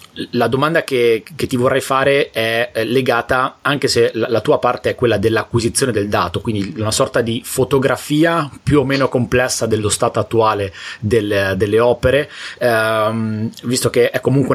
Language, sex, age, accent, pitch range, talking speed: Italian, male, 30-49, native, 105-130 Hz, 160 wpm